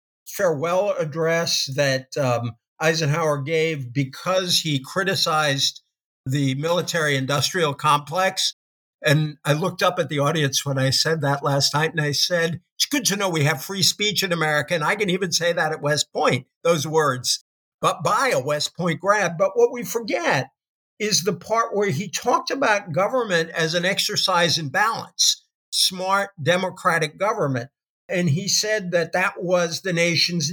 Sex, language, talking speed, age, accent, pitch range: male, English, 165 wpm, 50-69, American, 150-195 Hz